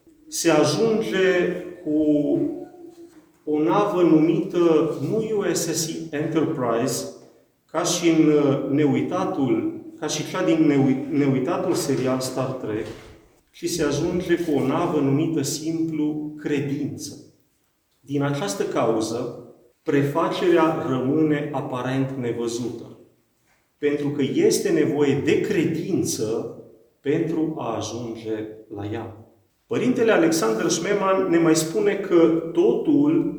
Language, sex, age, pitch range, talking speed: Romanian, male, 40-59, 135-190 Hz, 100 wpm